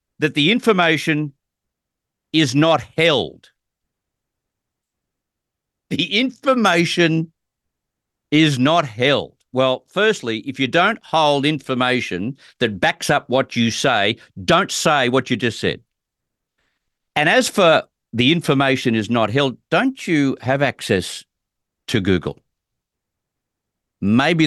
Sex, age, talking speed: male, 50-69, 110 wpm